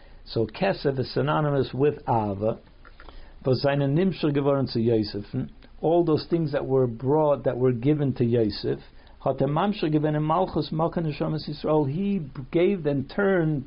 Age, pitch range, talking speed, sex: 60-79, 125-170 Hz, 90 wpm, male